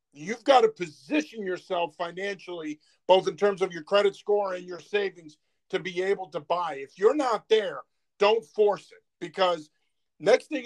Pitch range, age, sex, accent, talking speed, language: 175-220 Hz, 50-69, male, American, 175 wpm, English